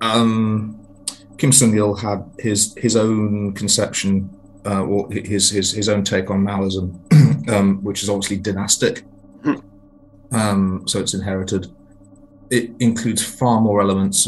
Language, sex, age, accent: English, male, 30-49, British